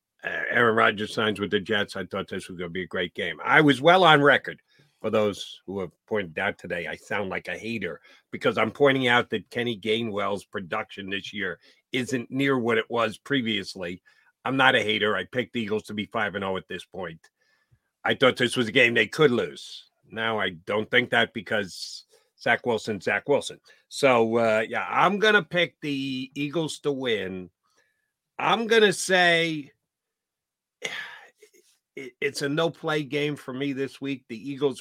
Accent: American